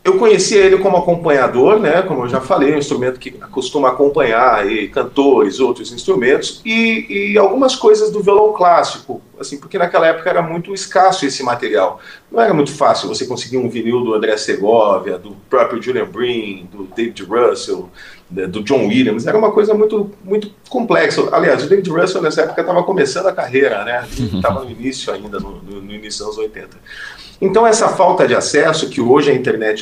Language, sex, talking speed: Portuguese, male, 185 wpm